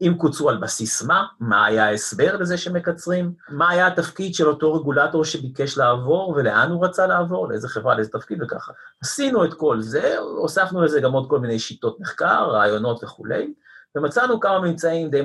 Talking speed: 175 wpm